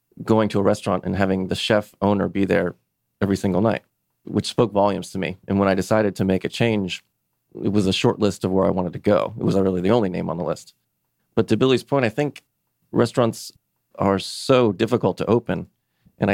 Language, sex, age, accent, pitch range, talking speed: English, male, 30-49, American, 95-115 Hz, 220 wpm